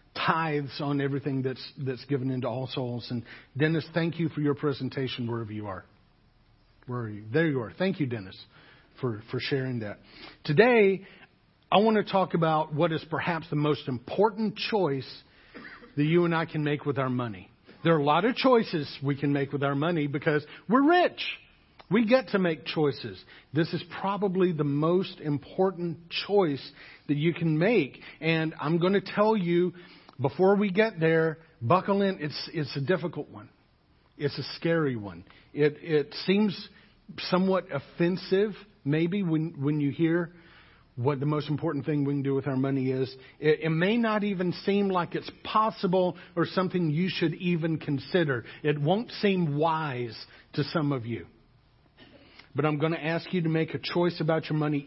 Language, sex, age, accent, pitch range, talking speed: English, male, 50-69, American, 140-175 Hz, 180 wpm